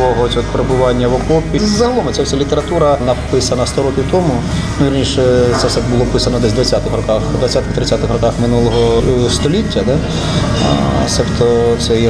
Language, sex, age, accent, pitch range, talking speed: Ukrainian, male, 30-49, native, 115-135 Hz, 145 wpm